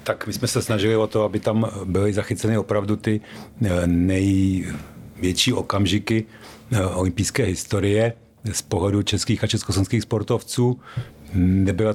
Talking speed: 120 wpm